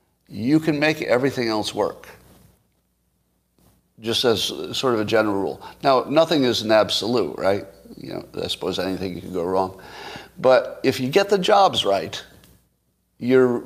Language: English